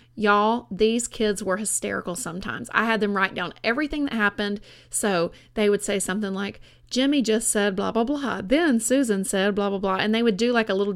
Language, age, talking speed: English, 30-49, 215 wpm